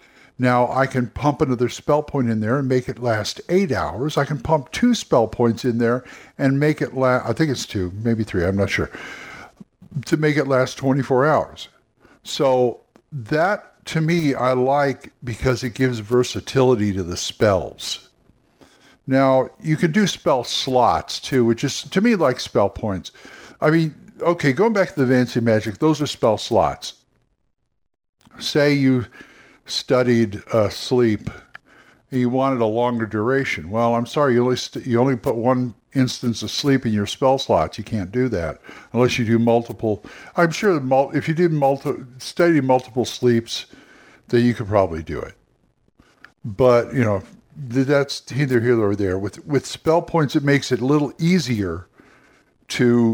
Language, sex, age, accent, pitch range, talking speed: English, male, 60-79, American, 115-140 Hz, 175 wpm